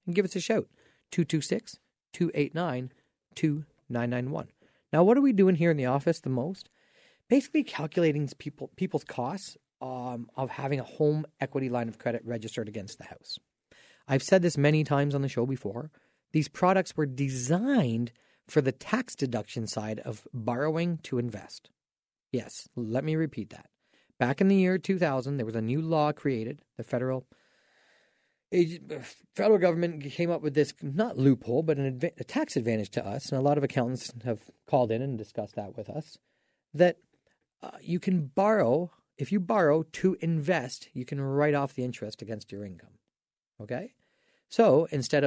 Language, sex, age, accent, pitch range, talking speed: English, male, 40-59, American, 120-170 Hz, 170 wpm